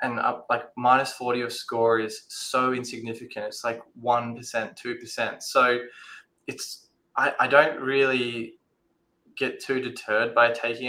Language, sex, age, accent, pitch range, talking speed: English, male, 20-39, Australian, 110-130 Hz, 140 wpm